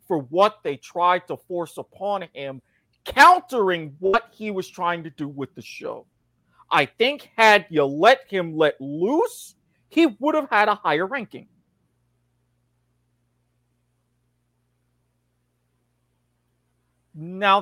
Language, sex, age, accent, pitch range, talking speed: English, male, 40-59, American, 130-205 Hz, 115 wpm